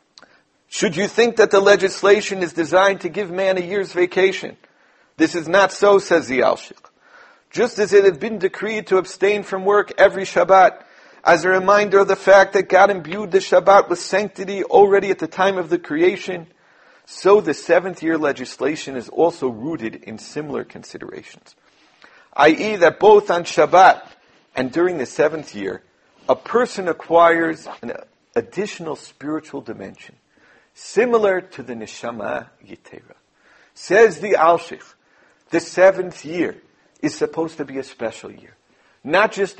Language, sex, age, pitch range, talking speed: English, male, 50-69, 170-200 Hz, 150 wpm